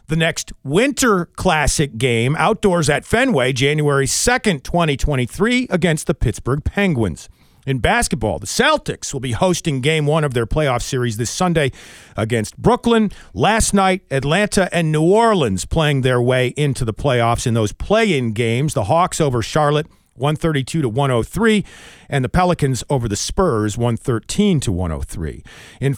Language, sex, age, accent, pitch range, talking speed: English, male, 40-59, American, 120-175 Hz, 150 wpm